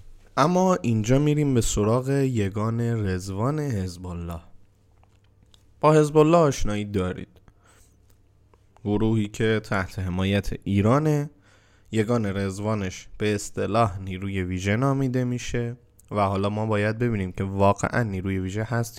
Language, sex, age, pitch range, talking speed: Persian, male, 20-39, 100-125 Hz, 110 wpm